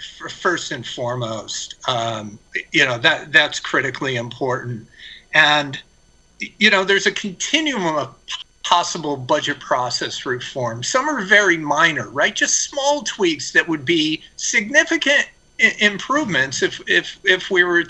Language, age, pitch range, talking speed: English, 50-69, 145-210 Hz, 130 wpm